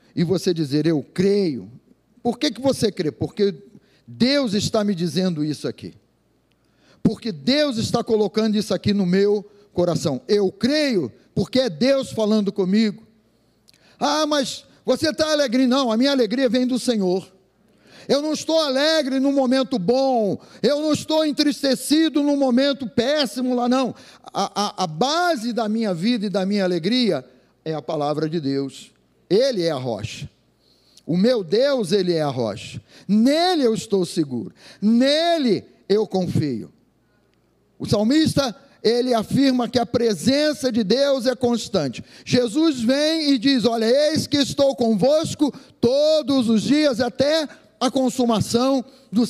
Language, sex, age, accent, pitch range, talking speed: Portuguese, male, 50-69, Brazilian, 200-270 Hz, 150 wpm